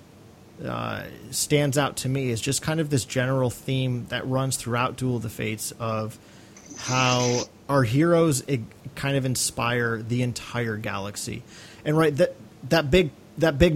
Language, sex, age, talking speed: English, male, 30-49, 160 wpm